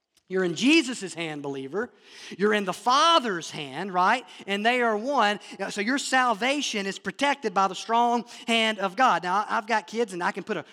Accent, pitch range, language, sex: American, 185-230 Hz, English, male